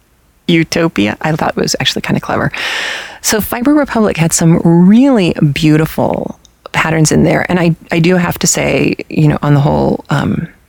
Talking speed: 180 wpm